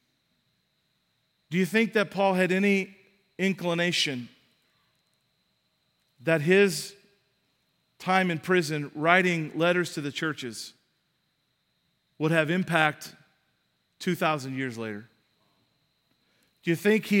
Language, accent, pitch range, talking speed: English, American, 160-190 Hz, 100 wpm